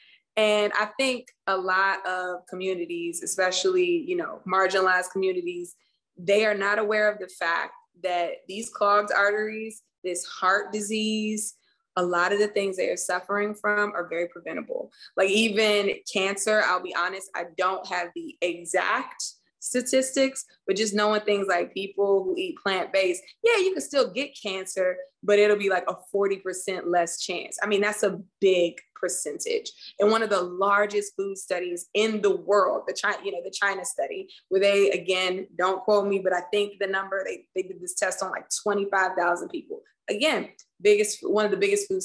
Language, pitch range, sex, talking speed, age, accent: English, 185-250 Hz, female, 175 wpm, 20-39, American